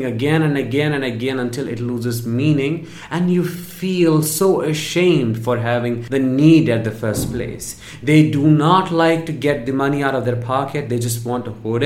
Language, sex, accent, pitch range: English, male, Indian, 120-150 Hz